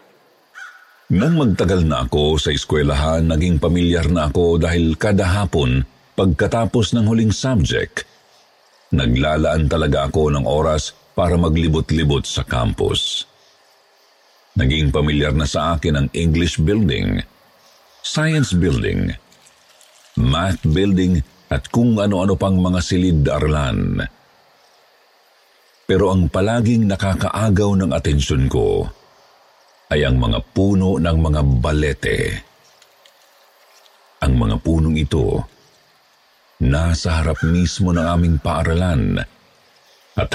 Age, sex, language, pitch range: 50-69, male, Filipino, 75-90 Hz